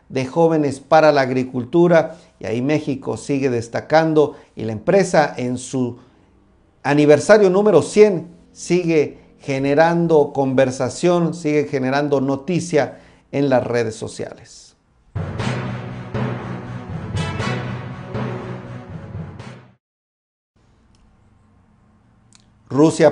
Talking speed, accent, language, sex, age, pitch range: 75 wpm, Mexican, Spanish, male, 50-69, 125-155 Hz